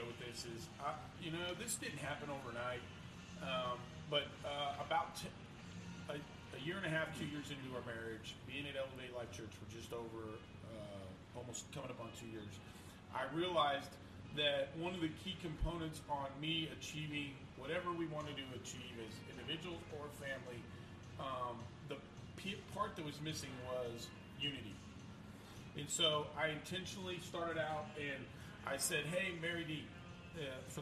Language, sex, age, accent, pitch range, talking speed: English, male, 40-59, American, 115-155 Hz, 160 wpm